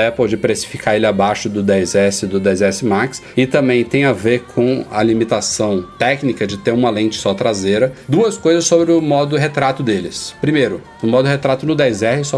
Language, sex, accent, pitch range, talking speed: Portuguese, male, Brazilian, 110-135 Hz, 195 wpm